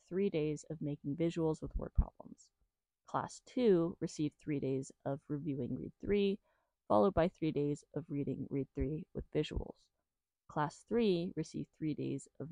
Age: 20-39